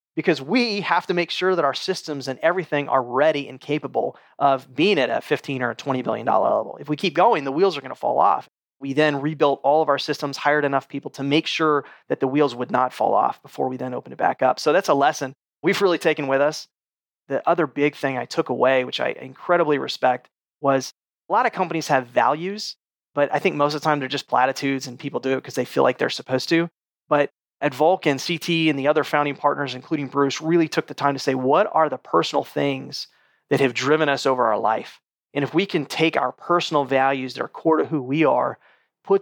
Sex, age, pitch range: male, 30-49, 135-160 Hz